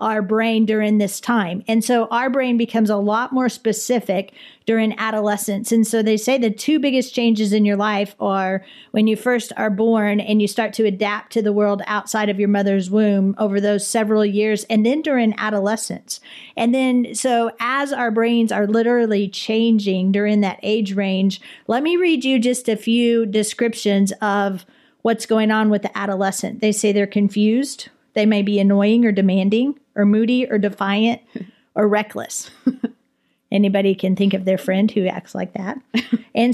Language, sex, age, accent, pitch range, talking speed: English, female, 40-59, American, 205-235 Hz, 180 wpm